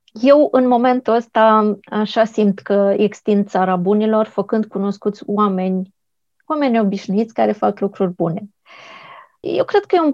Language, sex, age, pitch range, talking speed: Romanian, female, 20-39, 195-230 Hz, 140 wpm